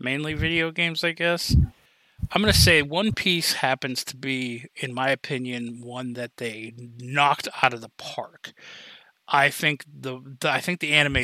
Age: 30-49